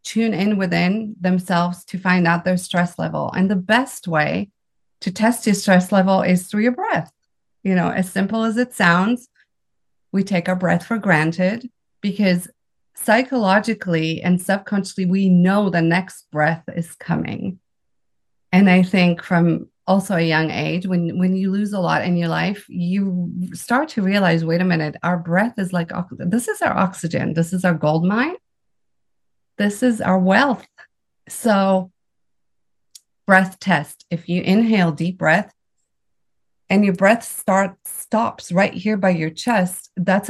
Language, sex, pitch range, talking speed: English, female, 175-205 Hz, 160 wpm